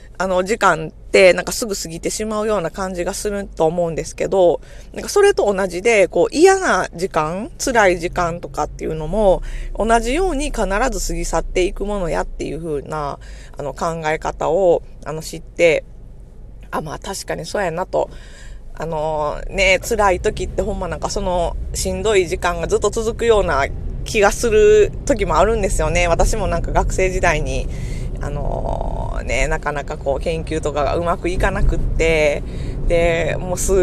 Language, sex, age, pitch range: Japanese, female, 20-39, 165-215 Hz